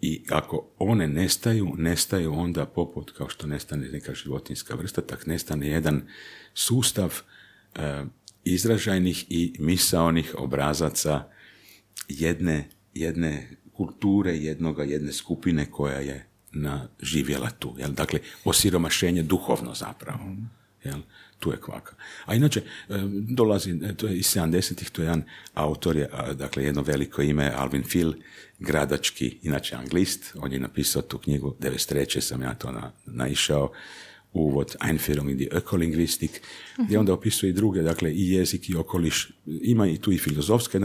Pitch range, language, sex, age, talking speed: 75-95 Hz, Croatian, male, 60-79, 135 wpm